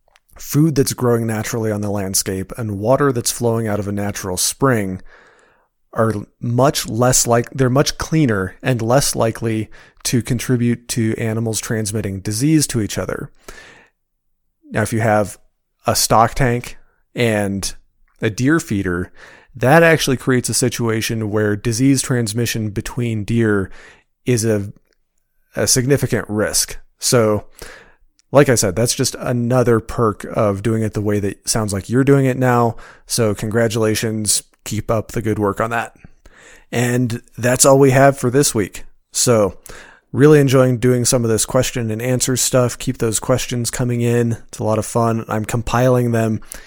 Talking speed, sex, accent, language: 160 wpm, male, American, English